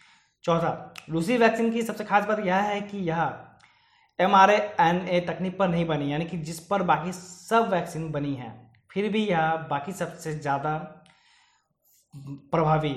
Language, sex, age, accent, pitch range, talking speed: Hindi, male, 20-39, native, 155-190 Hz, 155 wpm